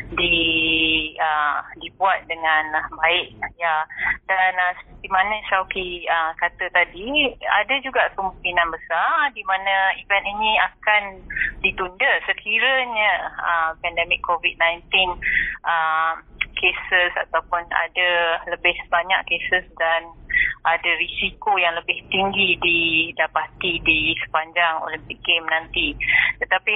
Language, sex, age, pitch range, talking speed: Malay, female, 20-39, 165-200 Hz, 110 wpm